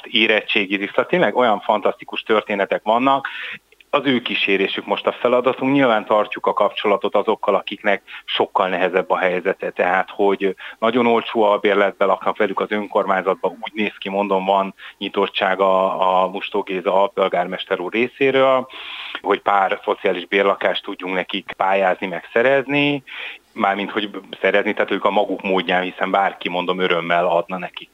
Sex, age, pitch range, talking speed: male, 30-49, 95-110 Hz, 150 wpm